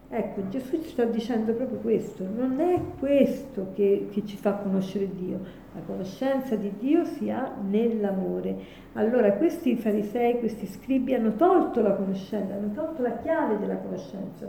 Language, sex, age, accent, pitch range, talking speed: Italian, female, 50-69, native, 200-250 Hz, 155 wpm